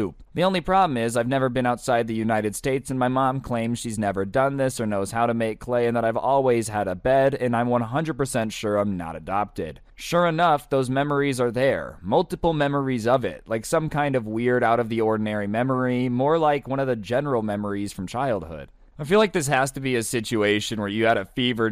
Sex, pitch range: male, 110-130 Hz